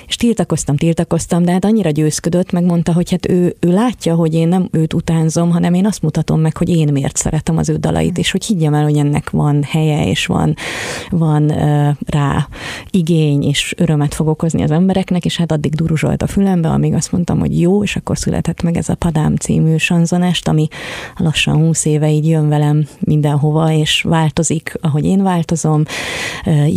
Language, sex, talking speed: Hungarian, female, 190 wpm